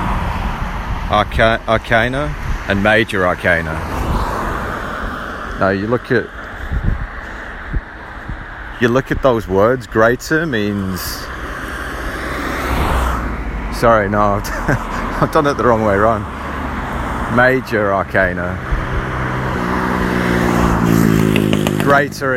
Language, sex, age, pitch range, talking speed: English, male, 30-49, 75-110 Hz, 75 wpm